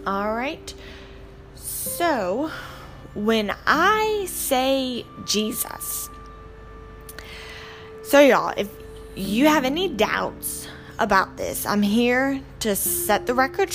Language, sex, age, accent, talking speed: English, female, 10-29, American, 90 wpm